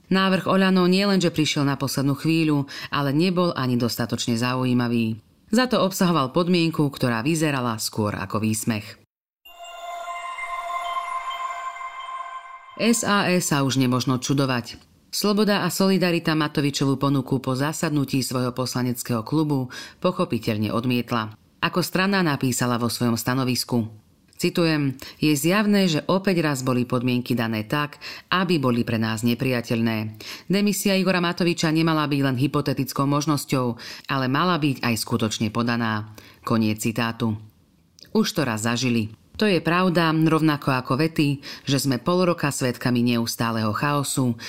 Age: 40-59